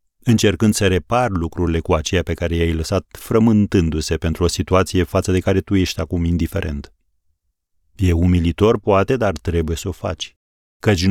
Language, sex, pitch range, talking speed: Romanian, male, 85-105 Hz, 160 wpm